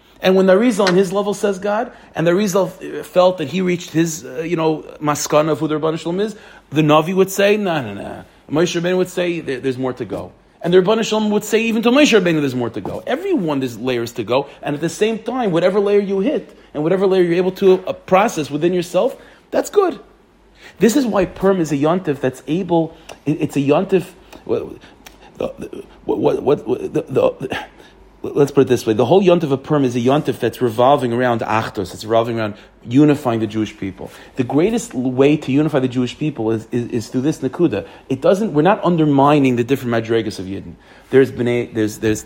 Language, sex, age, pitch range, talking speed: English, male, 40-59, 130-185 Hz, 215 wpm